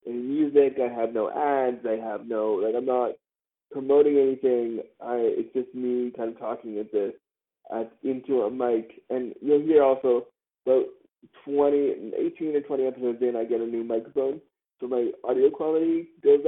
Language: English